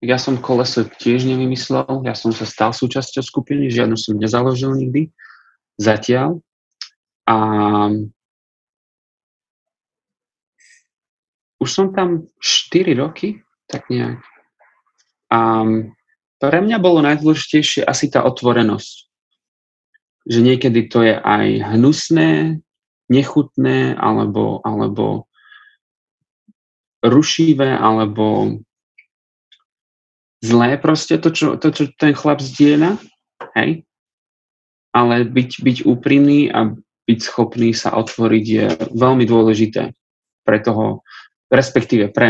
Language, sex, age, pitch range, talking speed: Slovak, male, 30-49, 110-145 Hz, 100 wpm